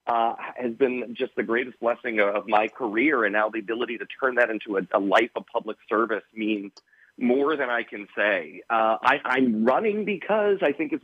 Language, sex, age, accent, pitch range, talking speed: English, male, 40-59, American, 110-135 Hz, 205 wpm